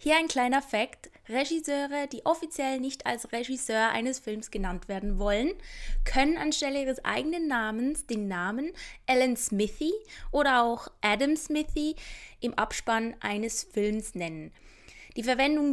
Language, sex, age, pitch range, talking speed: German, female, 20-39, 215-270 Hz, 135 wpm